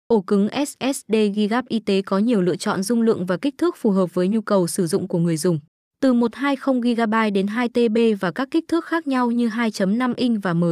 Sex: female